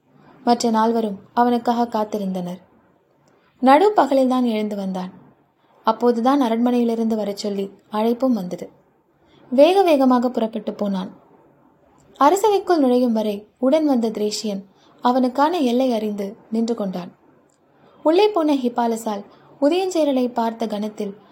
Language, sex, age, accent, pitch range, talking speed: Tamil, female, 20-39, native, 210-270 Hz, 100 wpm